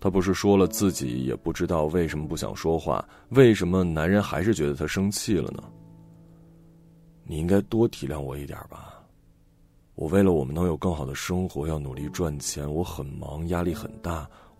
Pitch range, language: 80-110 Hz, Chinese